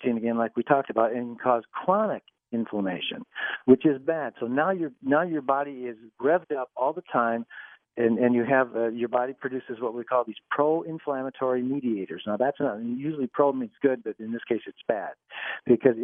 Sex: male